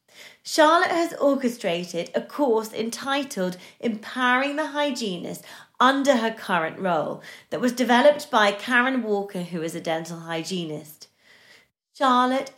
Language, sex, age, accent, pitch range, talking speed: English, female, 30-49, British, 190-285 Hz, 120 wpm